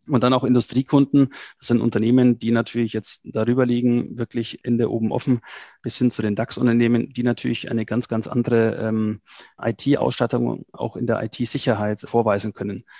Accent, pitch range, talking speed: German, 115-125 Hz, 165 wpm